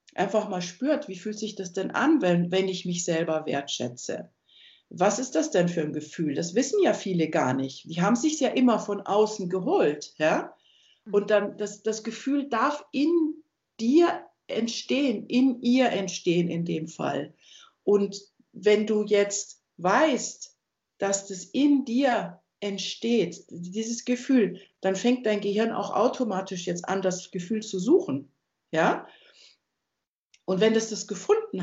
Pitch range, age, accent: 190-245 Hz, 60-79, German